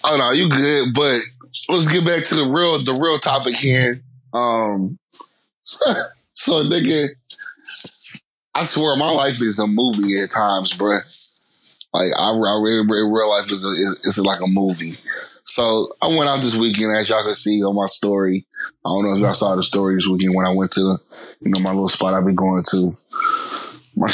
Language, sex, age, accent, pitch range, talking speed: English, male, 20-39, American, 100-125 Hz, 195 wpm